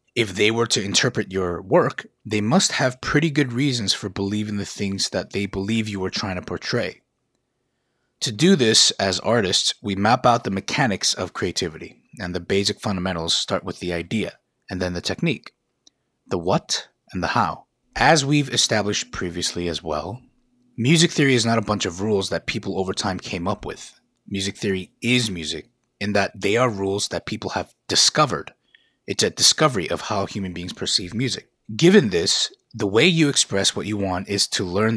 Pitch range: 100-130 Hz